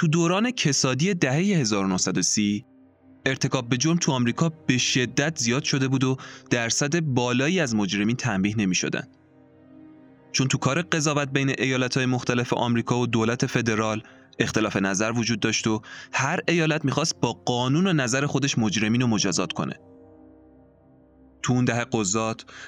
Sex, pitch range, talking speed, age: male, 110-150 Hz, 150 wpm, 20-39